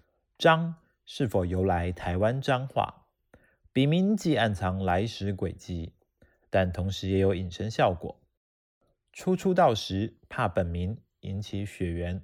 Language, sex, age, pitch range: Chinese, male, 30-49, 90-120 Hz